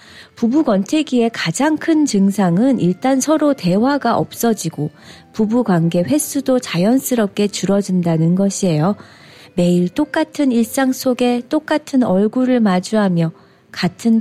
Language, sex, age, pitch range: Korean, female, 40-59, 180-275 Hz